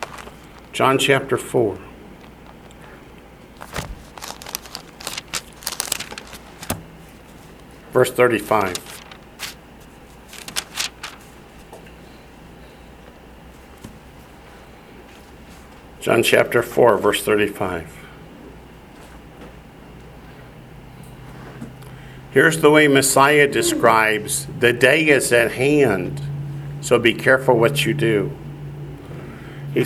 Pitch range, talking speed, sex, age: 120-150 Hz, 55 wpm, male, 50-69